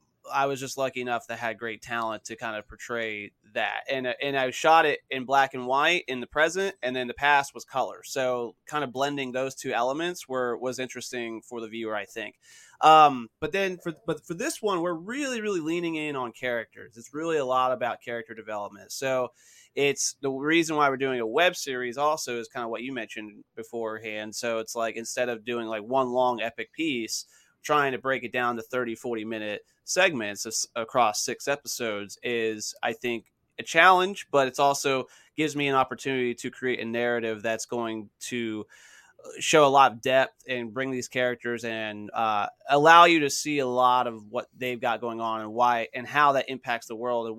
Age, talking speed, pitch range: 20-39, 205 wpm, 115-145 Hz